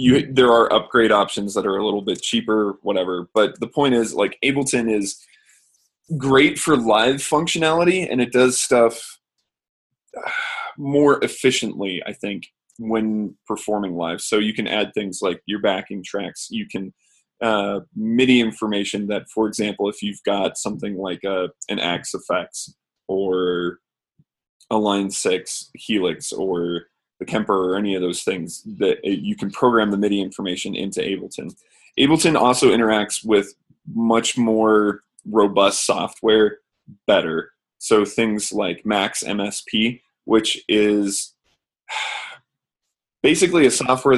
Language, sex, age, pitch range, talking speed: English, male, 20-39, 100-125 Hz, 135 wpm